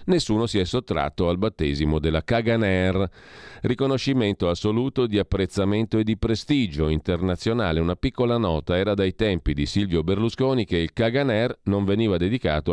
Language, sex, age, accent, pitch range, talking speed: Italian, male, 40-59, native, 85-110 Hz, 145 wpm